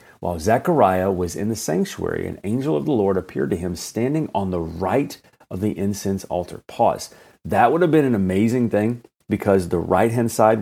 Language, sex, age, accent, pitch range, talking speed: English, male, 40-59, American, 90-115 Hz, 190 wpm